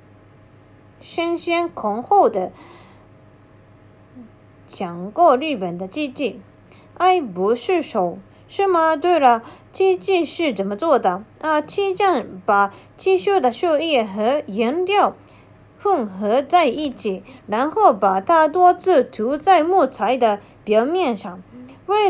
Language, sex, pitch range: Japanese, female, 210-340 Hz